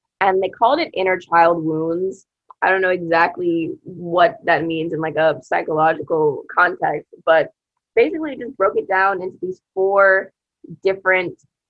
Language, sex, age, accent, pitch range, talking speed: English, female, 20-39, American, 170-230 Hz, 150 wpm